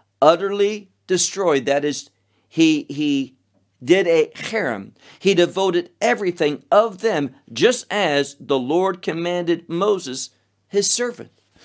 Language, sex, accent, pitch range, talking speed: English, male, American, 115-180 Hz, 115 wpm